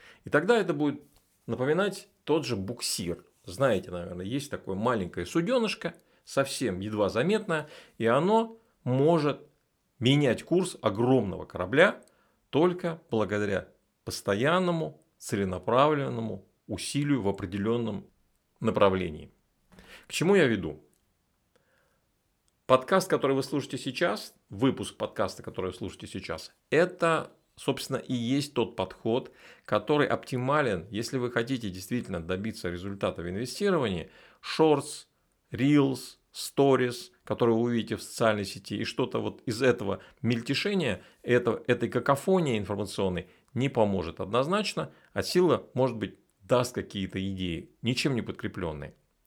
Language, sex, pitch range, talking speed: Russian, male, 105-150 Hz, 115 wpm